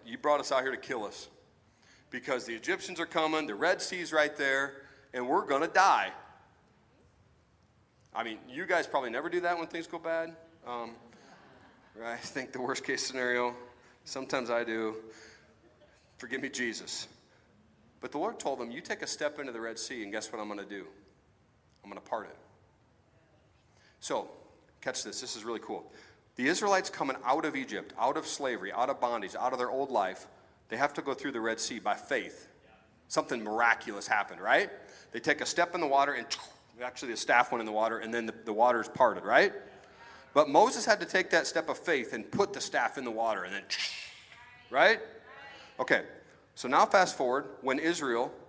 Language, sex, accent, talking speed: English, male, American, 195 wpm